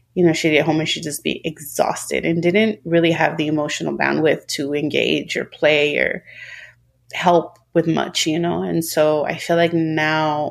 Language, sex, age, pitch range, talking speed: English, female, 30-49, 155-175 Hz, 190 wpm